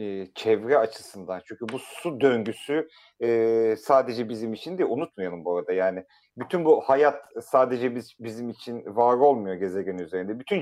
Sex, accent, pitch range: male, native, 110-145 Hz